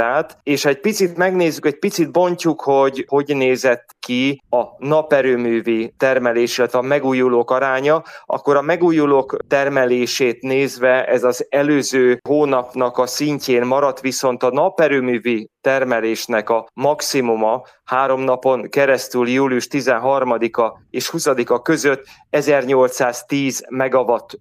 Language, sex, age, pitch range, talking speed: Hungarian, male, 30-49, 125-145 Hz, 115 wpm